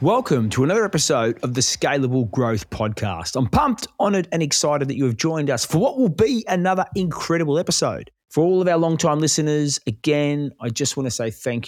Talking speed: 200 wpm